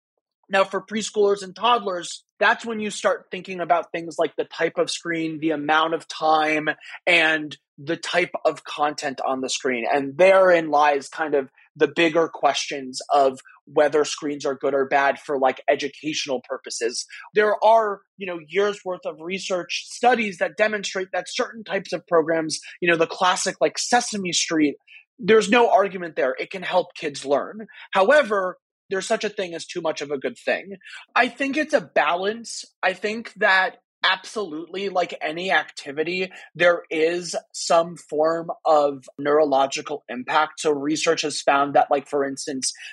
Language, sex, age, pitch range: English, male, 30-49, 155-200 Hz